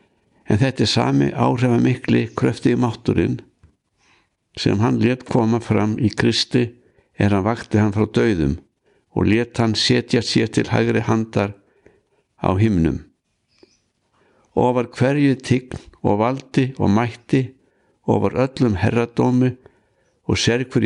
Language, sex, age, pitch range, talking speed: English, male, 60-79, 105-125 Hz, 125 wpm